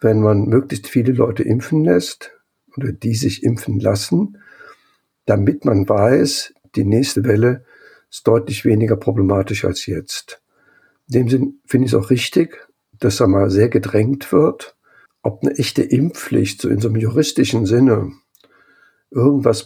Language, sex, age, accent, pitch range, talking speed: German, male, 60-79, German, 110-135 Hz, 150 wpm